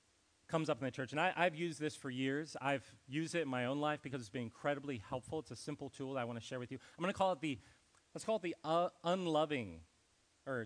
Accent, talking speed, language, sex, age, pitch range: American, 270 wpm, English, male, 40-59, 115-170 Hz